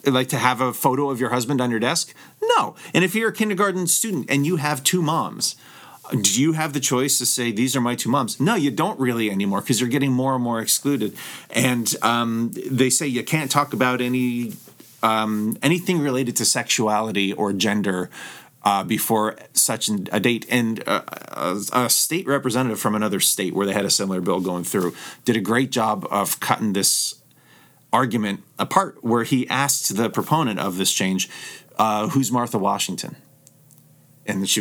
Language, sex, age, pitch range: English, male, 30-49, 110-140 Hz